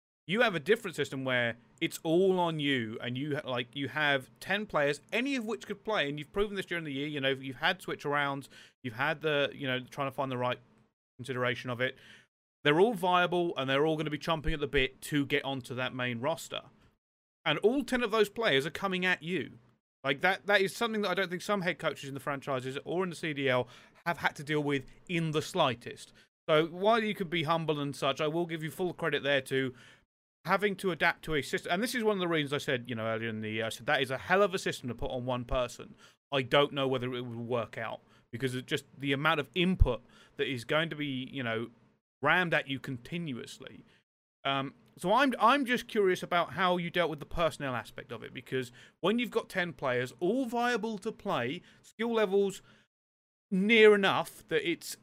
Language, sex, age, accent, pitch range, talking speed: English, male, 30-49, British, 130-185 Hz, 235 wpm